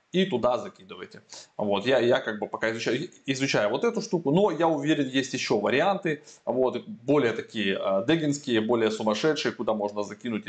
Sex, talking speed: male, 170 wpm